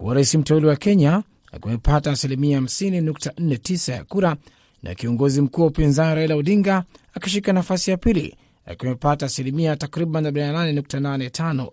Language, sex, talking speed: Swahili, male, 115 wpm